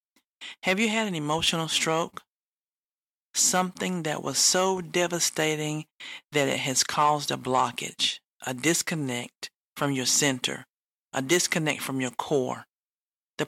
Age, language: 40-59, English